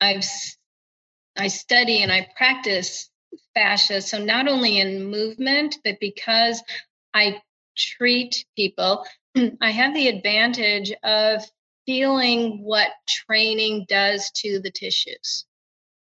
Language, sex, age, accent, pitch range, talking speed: English, female, 40-59, American, 205-235 Hz, 110 wpm